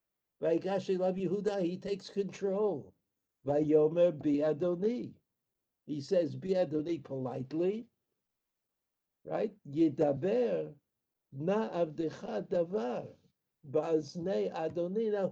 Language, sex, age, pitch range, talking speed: English, male, 60-79, 145-190 Hz, 55 wpm